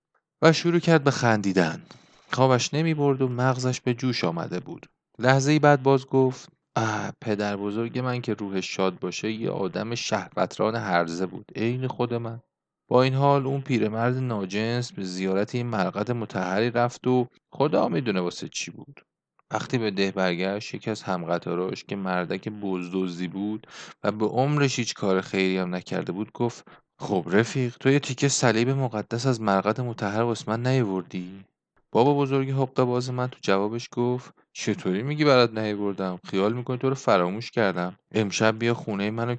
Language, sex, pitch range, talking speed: Persian, male, 100-125 Hz, 155 wpm